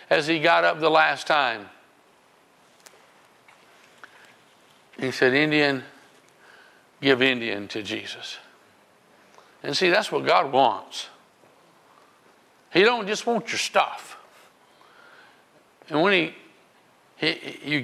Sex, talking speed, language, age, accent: male, 105 wpm, English, 60-79, American